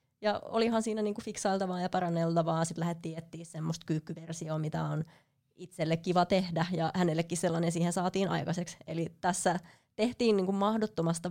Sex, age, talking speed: female, 20-39, 150 wpm